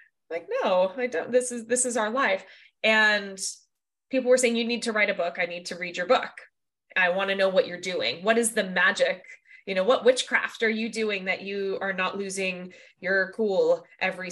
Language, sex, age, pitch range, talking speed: English, female, 20-39, 180-250 Hz, 220 wpm